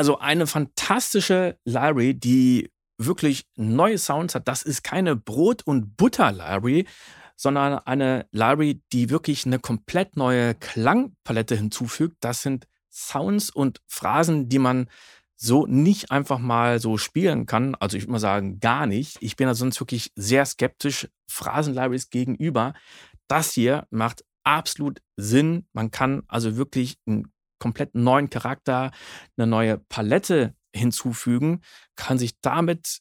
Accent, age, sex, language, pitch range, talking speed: German, 40-59, male, German, 115-145 Hz, 135 wpm